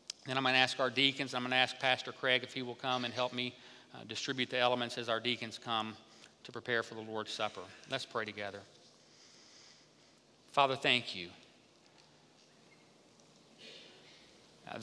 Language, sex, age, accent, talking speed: English, male, 40-59, American, 165 wpm